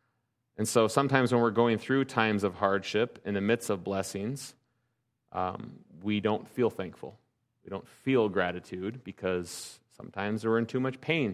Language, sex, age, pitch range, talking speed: English, male, 30-49, 100-120 Hz, 165 wpm